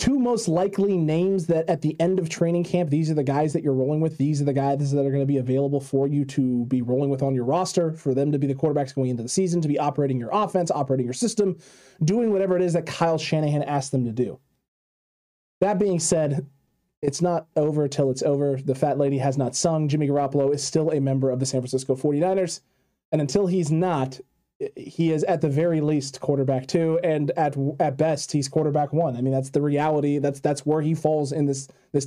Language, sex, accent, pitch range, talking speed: English, male, American, 140-165 Hz, 235 wpm